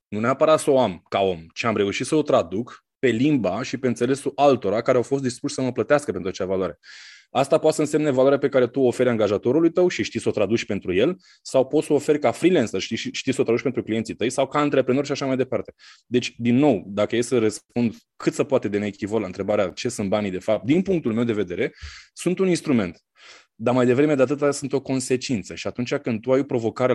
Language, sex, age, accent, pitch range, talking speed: Romanian, male, 20-39, native, 110-140 Hz, 250 wpm